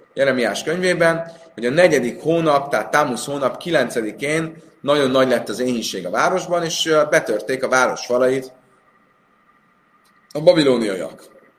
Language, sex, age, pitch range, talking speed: Hungarian, male, 30-49, 125-160 Hz, 125 wpm